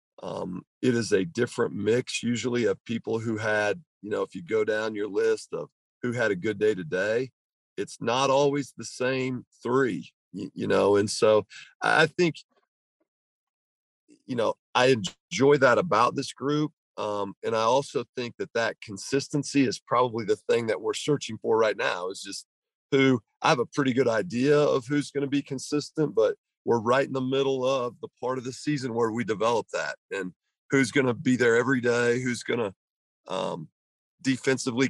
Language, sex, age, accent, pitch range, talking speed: English, male, 40-59, American, 120-155 Hz, 185 wpm